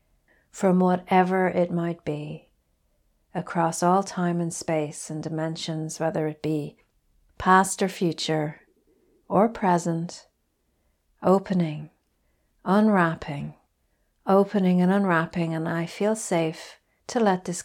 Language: English